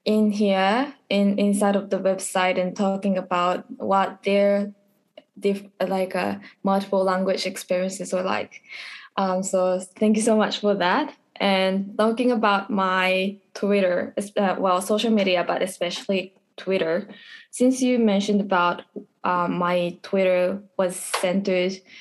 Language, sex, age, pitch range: Japanese, female, 10-29, 185-210 Hz